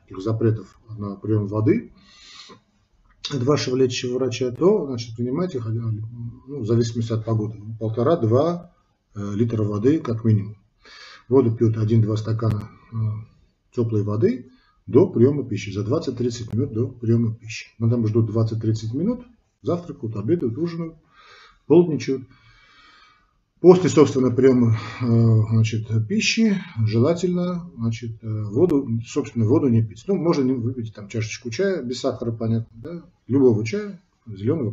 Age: 40-59